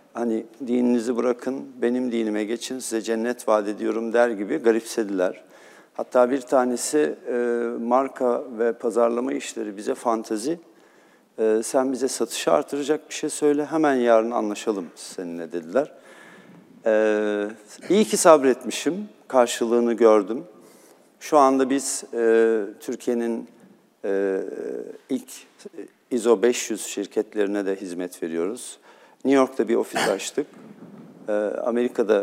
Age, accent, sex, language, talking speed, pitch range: 50-69, native, male, Turkish, 115 wpm, 110-130 Hz